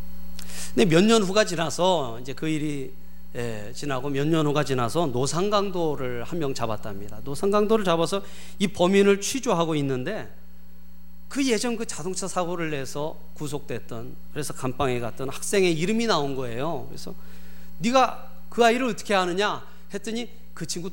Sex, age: male, 40-59